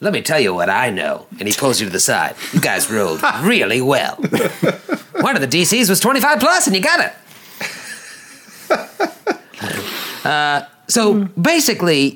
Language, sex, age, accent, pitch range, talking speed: English, male, 50-69, American, 155-225 Hz, 165 wpm